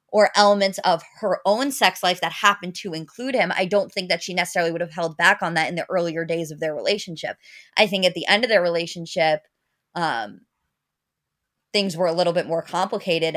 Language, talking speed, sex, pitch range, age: English, 210 wpm, female, 165-200 Hz, 20-39